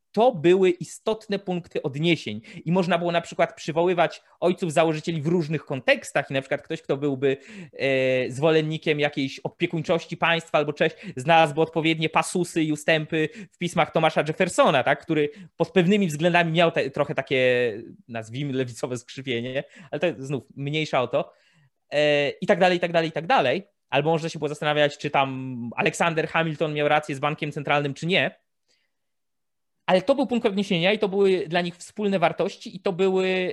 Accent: native